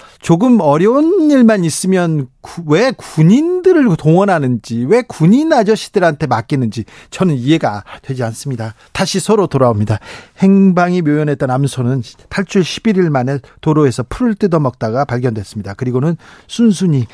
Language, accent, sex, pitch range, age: Korean, native, male, 135-185 Hz, 40-59